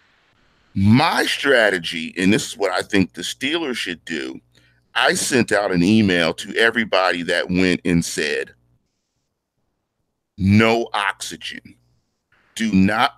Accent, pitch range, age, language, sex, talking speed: American, 95-135 Hz, 40-59, English, male, 125 wpm